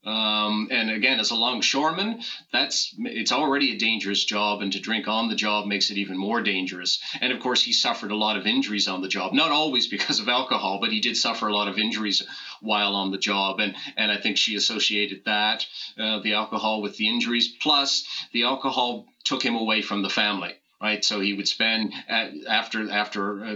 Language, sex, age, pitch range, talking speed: English, male, 30-49, 100-110 Hz, 210 wpm